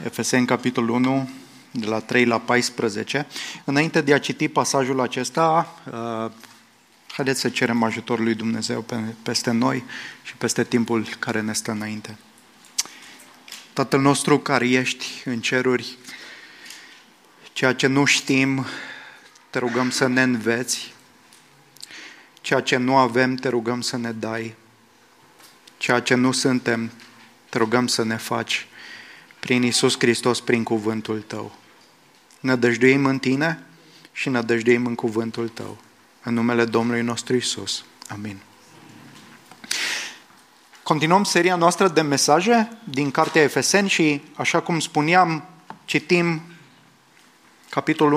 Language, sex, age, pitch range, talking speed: English, male, 20-39, 115-145 Hz, 120 wpm